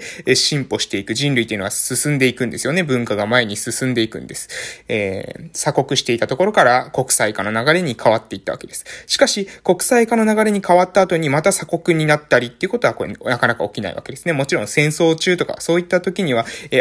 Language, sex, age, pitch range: Japanese, male, 20-39, 120-175 Hz